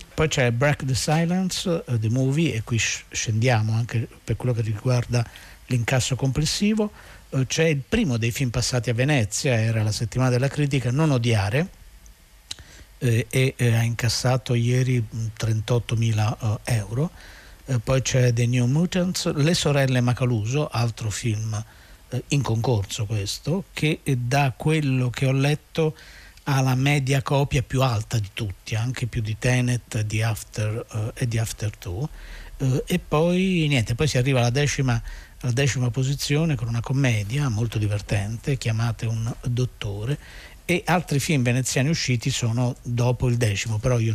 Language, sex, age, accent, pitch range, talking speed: Italian, male, 50-69, native, 115-140 Hz, 140 wpm